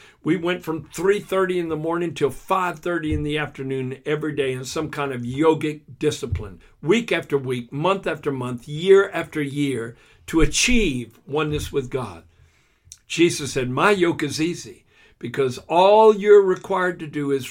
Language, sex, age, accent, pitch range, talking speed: English, male, 60-79, American, 125-170 Hz, 160 wpm